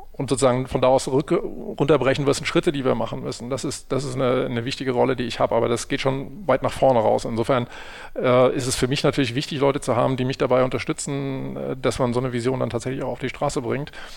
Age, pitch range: 40-59, 125-140 Hz